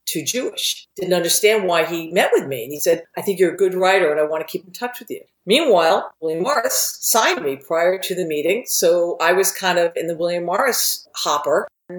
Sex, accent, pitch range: female, American, 165-200 Hz